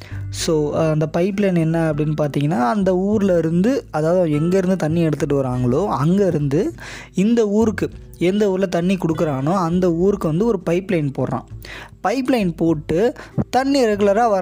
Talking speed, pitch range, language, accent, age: 135 wpm, 150-195 Hz, Tamil, native, 20-39